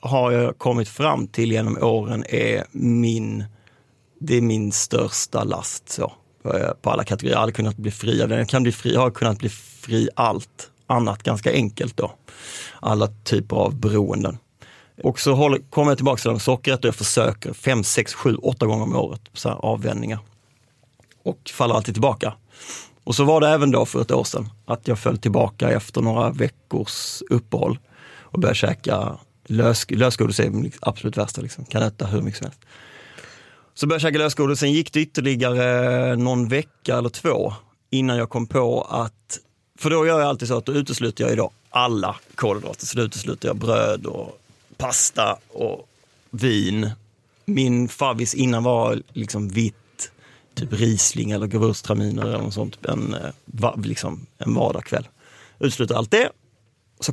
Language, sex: Swedish, male